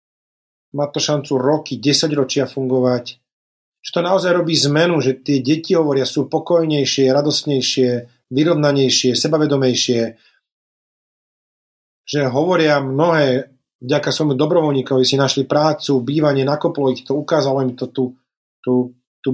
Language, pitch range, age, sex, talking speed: Slovak, 130-150 Hz, 30-49, male, 120 wpm